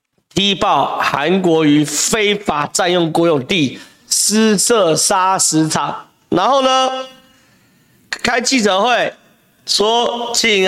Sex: male